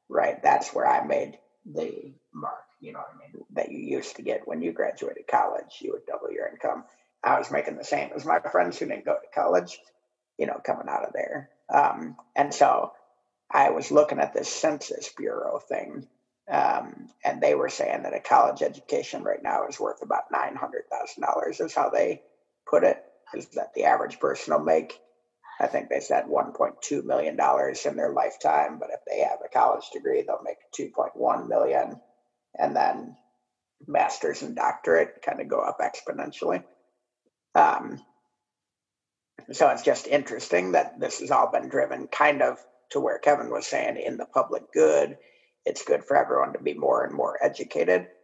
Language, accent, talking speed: English, American, 180 wpm